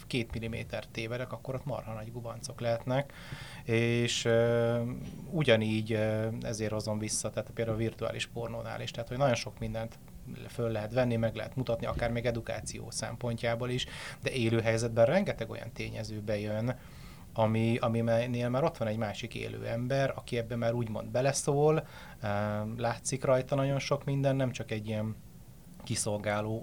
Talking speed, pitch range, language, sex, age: 160 wpm, 110-125 Hz, Hungarian, male, 30-49